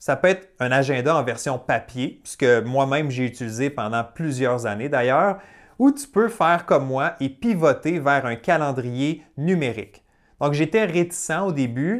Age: 30-49